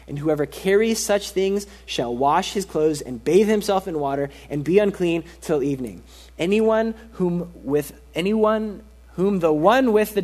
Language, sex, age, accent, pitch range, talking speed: English, male, 20-39, American, 155-205 Hz, 165 wpm